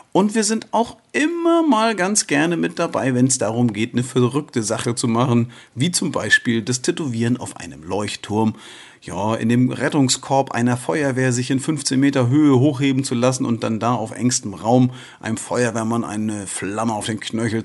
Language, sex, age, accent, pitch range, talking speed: German, male, 40-59, German, 115-150 Hz, 185 wpm